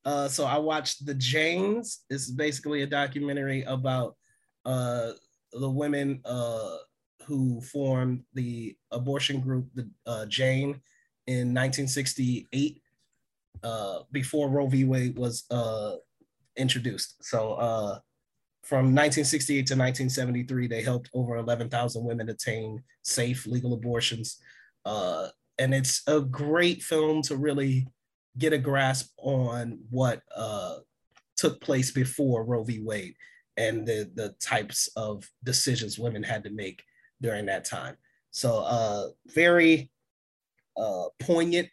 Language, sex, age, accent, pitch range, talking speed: English, male, 30-49, American, 120-145 Hz, 125 wpm